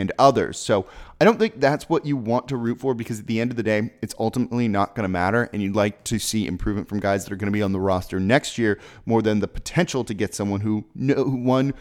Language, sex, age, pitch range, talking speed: English, male, 30-49, 105-130 Hz, 270 wpm